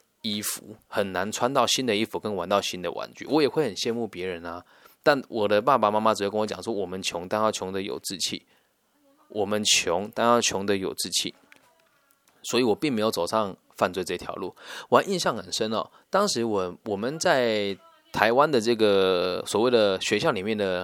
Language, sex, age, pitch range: Chinese, male, 20-39, 100-145 Hz